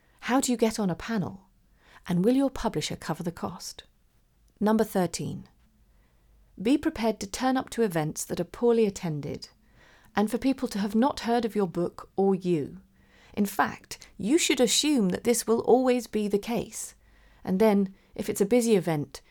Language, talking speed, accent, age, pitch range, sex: English, 180 wpm, British, 40-59, 170-230 Hz, female